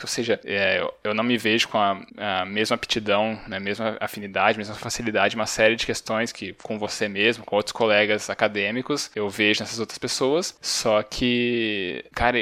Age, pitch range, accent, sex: 10-29, 110-135 Hz, Brazilian, male